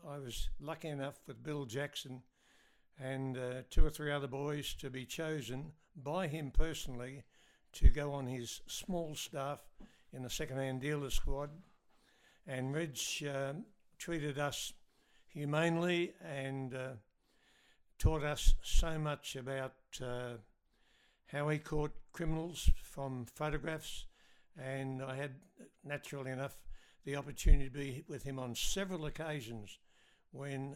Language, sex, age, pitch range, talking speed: English, male, 60-79, 135-160 Hz, 130 wpm